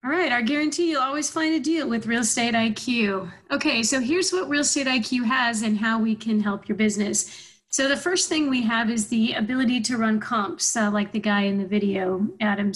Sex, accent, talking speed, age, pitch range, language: female, American, 225 wpm, 30-49, 215-255 Hz, English